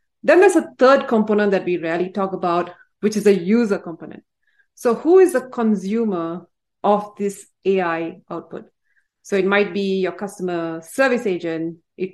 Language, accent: English, Indian